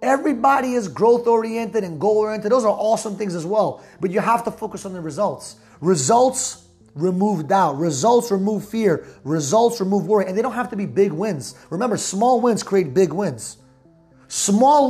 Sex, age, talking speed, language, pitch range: male, 30-49, 175 wpm, English, 195-240 Hz